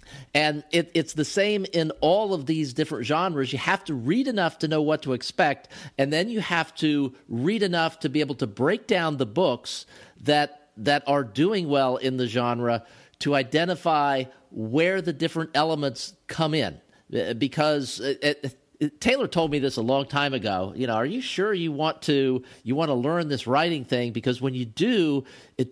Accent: American